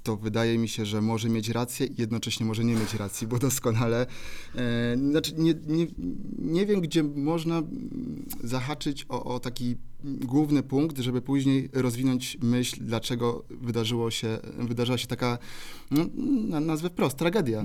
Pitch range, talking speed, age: 115-125 Hz, 150 wpm, 30-49